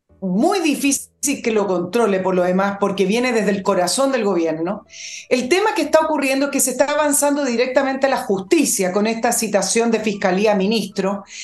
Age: 40-59